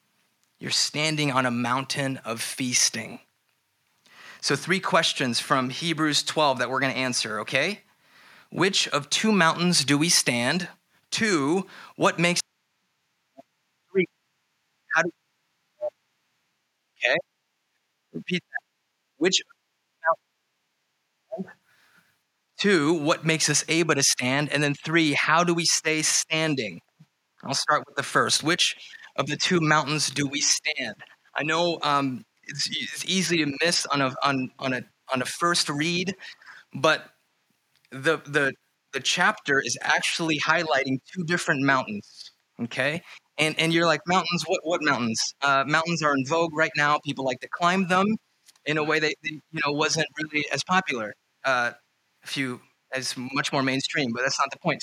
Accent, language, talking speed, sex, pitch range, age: American, English, 145 wpm, male, 135-170 Hz, 30-49